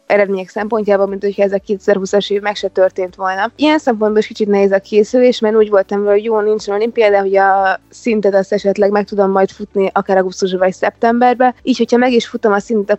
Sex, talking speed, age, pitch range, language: female, 215 wpm, 20-39, 200-220 Hz, Hungarian